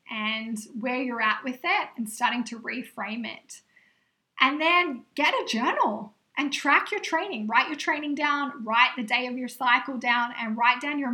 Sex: female